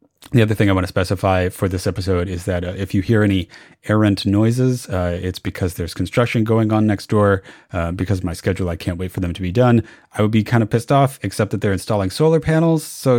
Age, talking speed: 30-49, 250 wpm